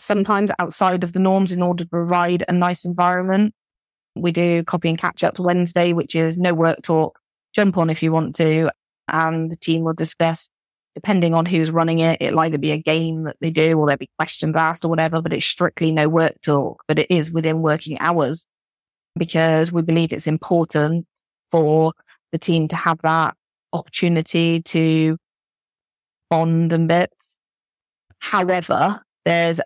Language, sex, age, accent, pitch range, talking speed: English, female, 20-39, British, 160-175 Hz, 170 wpm